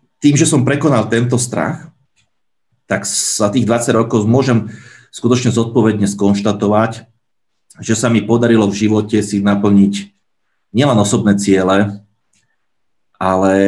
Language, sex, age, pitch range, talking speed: Slovak, male, 30-49, 100-120 Hz, 120 wpm